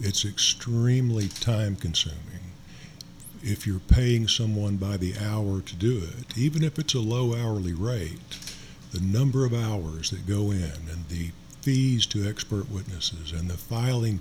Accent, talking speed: American, 150 wpm